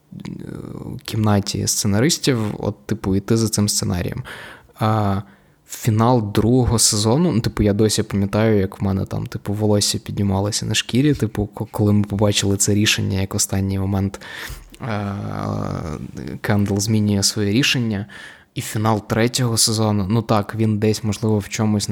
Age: 20-39